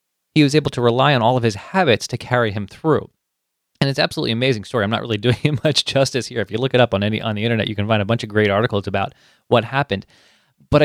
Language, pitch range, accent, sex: English, 105-145 Hz, American, male